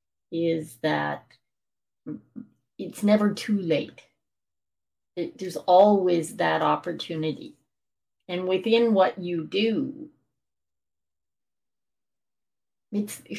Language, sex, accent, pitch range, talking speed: English, female, American, 160-205 Hz, 70 wpm